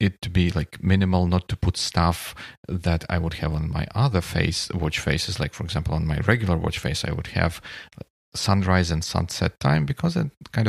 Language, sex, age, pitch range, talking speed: Russian, male, 40-59, 85-105 Hz, 210 wpm